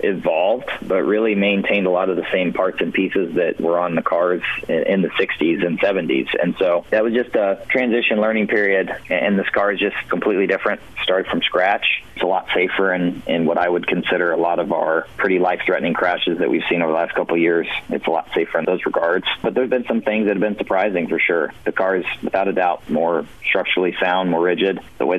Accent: American